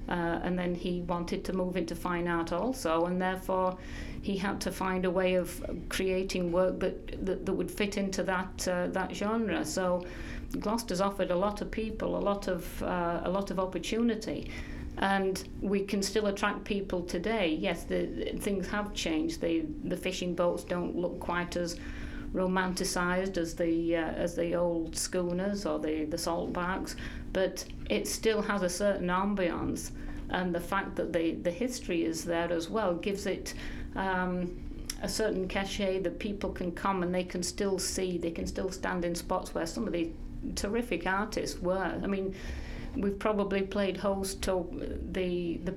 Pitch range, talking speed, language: 175-195 Hz, 180 wpm, English